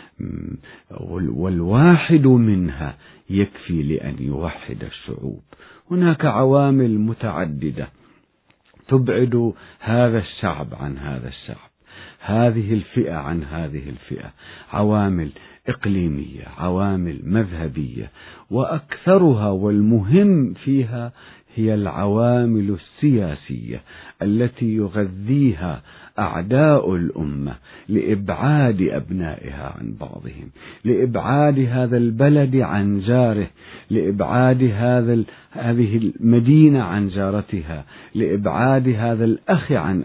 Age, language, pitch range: 50-69, Arabic, 85-120 Hz